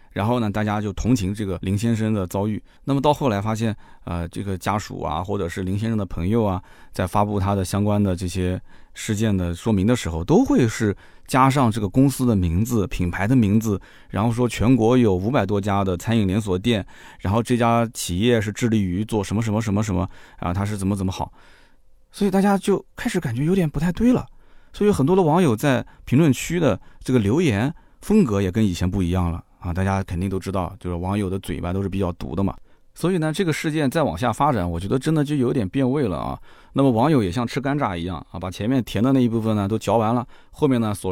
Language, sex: Chinese, male